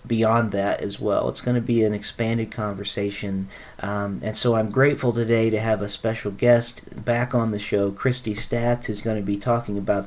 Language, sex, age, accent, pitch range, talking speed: English, male, 40-59, American, 105-120 Hz, 205 wpm